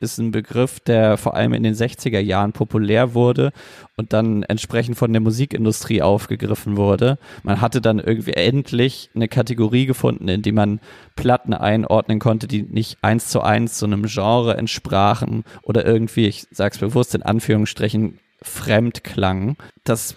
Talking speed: 160 wpm